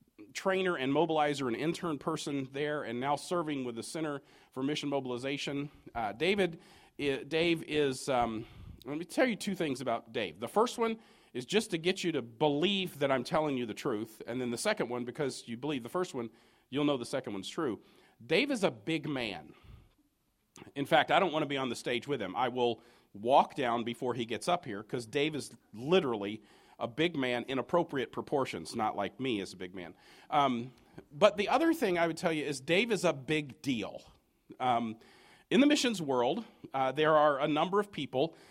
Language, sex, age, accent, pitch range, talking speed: English, male, 40-59, American, 130-175 Hz, 215 wpm